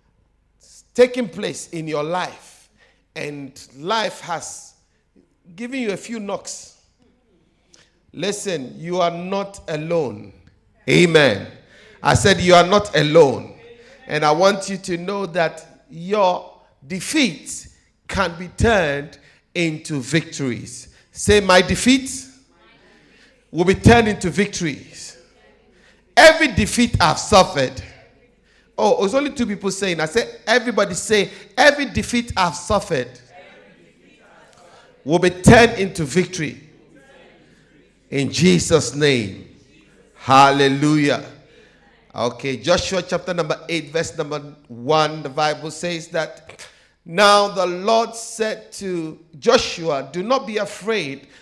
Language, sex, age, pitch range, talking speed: English, male, 50-69, 150-205 Hz, 110 wpm